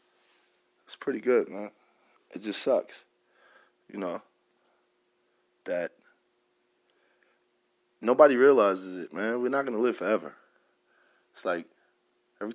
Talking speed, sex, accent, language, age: 100 wpm, male, American, English, 20-39